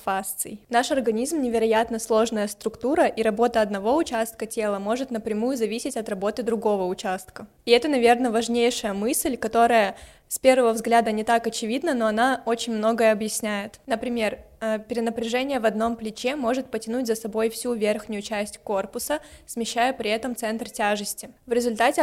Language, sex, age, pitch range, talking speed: Russian, female, 20-39, 215-240 Hz, 150 wpm